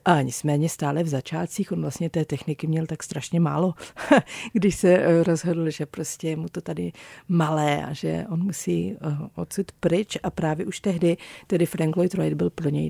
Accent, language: native, Czech